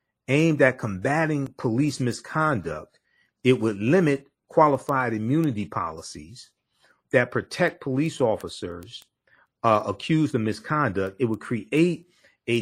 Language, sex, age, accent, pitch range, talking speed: English, male, 40-59, American, 110-145 Hz, 110 wpm